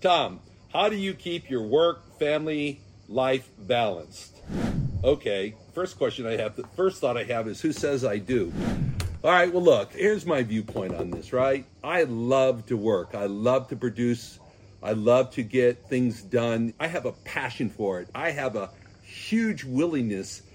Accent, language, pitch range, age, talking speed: American, English, 110-140 Hz, 50-69, 175 wpm